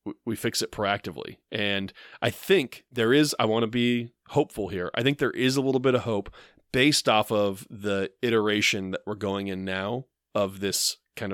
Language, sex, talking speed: English, male, 195 wpm